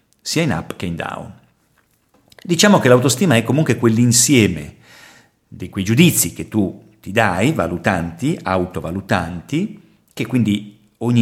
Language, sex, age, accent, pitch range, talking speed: Italian, male, 50-69, native, 105-155 Hz, 130 wpm